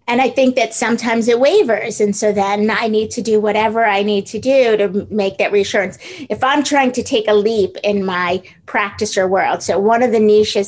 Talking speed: 225 wpm